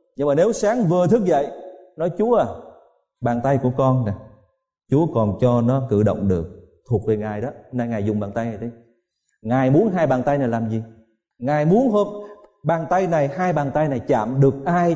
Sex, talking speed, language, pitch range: male, 220 wpm, Vietnamese, 115-175 Hz